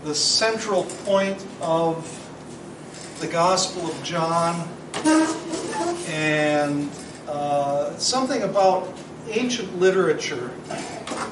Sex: male